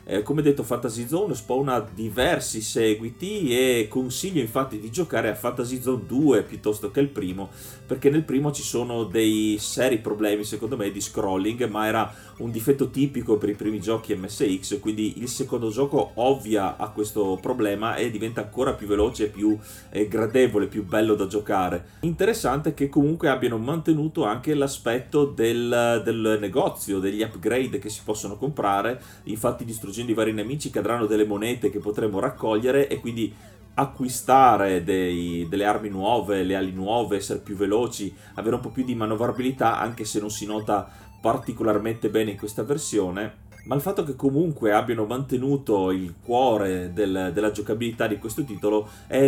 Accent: native